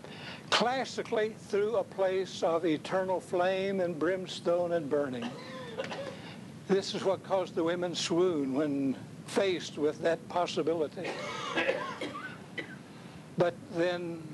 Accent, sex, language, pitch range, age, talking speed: American, male, English, 160-195 Hz, 60-79, 105 wpm